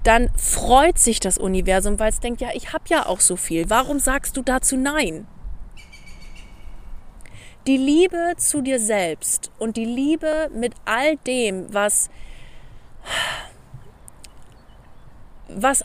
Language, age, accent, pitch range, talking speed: German, 30-49, German, 210-265 Hz, 125 wpm